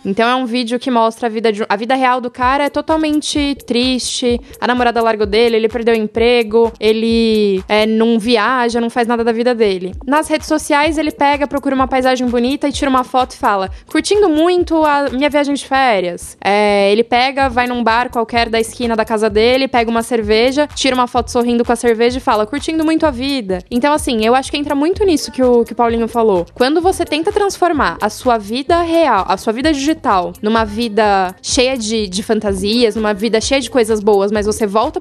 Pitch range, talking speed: 225-290 Hz, 220 wpm